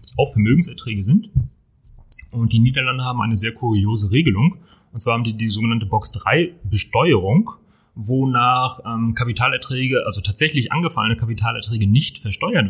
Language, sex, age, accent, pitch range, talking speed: German, male, 30-49, German, 110-140 Hz, 130 wpm